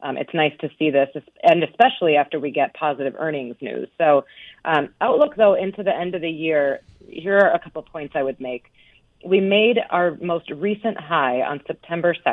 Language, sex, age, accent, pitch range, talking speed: English, female, 30-49, American, 140-180 Hz, 195 wpm